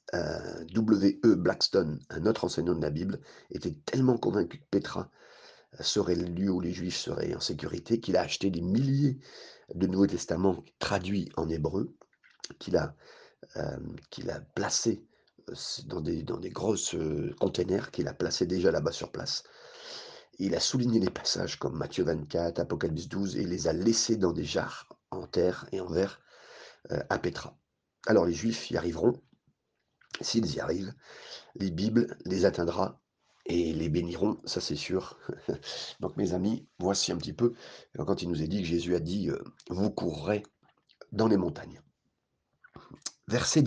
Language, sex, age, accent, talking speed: French, male, 40-59, French, 165 wpm